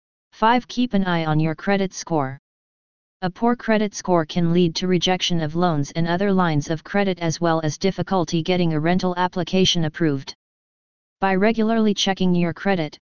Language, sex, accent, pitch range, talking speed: English, female, American, 165-195 Hz, 170 wpm